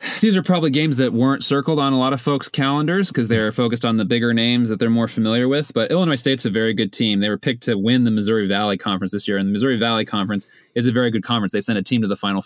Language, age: English, 20-39